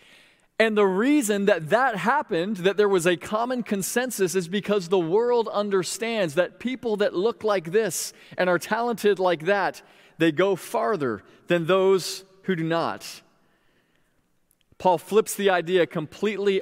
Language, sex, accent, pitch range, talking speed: English, male, American, 160-195 Hz, 150 wpm